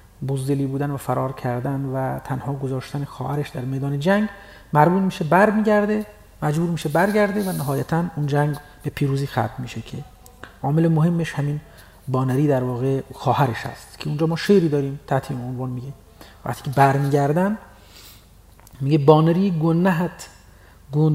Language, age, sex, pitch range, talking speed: Persian, 40-59, male, 135-165 Hz, 150 wpm